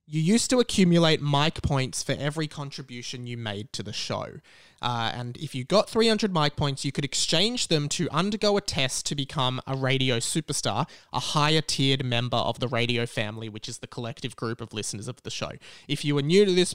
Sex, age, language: male, 20-39, English